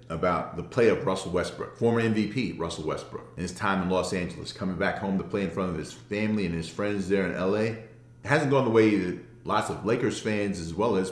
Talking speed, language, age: 245 wpm, English, 40-59